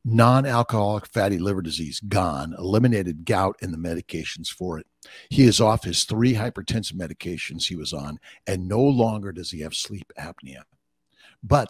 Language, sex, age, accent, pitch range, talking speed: English, male, 60-79, American, 85-115 Hz, 160 wpm